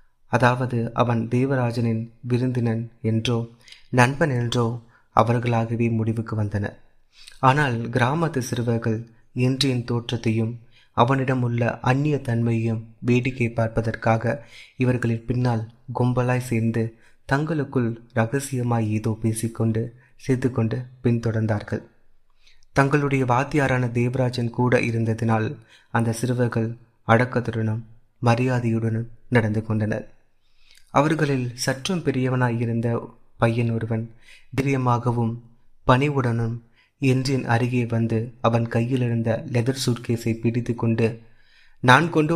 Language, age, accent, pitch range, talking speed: Tamil, 30-49, native, 115-125 Hz, 90 wpm